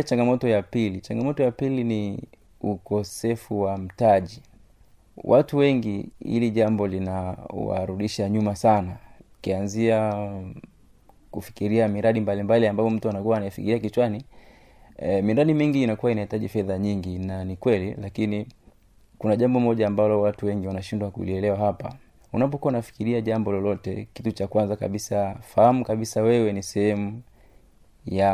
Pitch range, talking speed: 100-120 Hz, 125 wpm